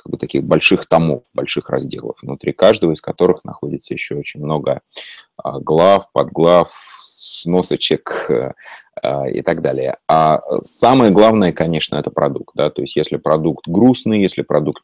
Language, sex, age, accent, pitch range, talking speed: Russian, male, 30-49, native, 75-90 Hz, 140 wpm